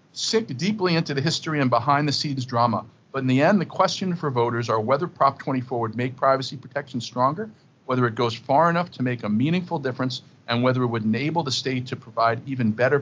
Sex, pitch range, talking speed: male, 115-135 Hz, 210 wpm